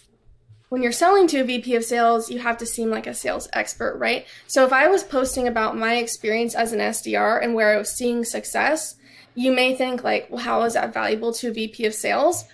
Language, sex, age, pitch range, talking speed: English, female, 20-39, 220-250 Hz, 230 wpm